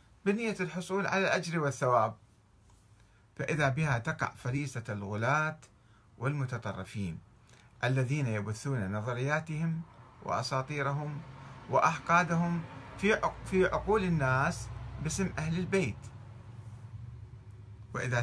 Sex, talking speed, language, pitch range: male, 75 wpm, Arabic, 110-145 Hz